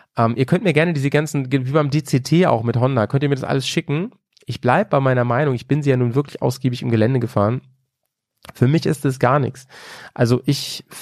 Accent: German